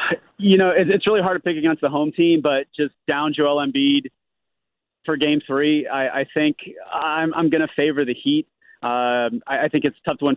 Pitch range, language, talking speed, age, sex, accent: 125-160 Hz, English, 215 wpm, 30-49, male, American